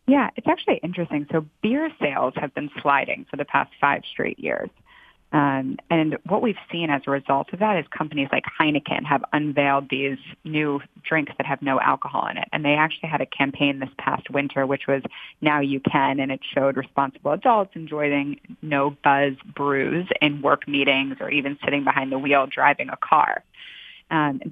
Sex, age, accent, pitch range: female, 20-39, American, 140-165 Hz